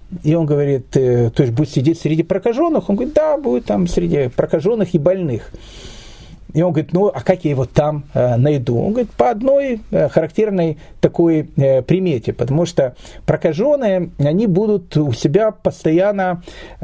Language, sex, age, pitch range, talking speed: Russian, male, 40-59, 135-195 Hz, 165 wpm